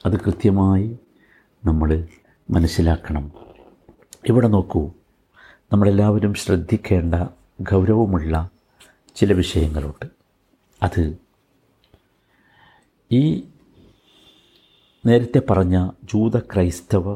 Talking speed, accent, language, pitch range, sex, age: 60 wpm, native, Malayalam, 85-110 Hz, male, 60-79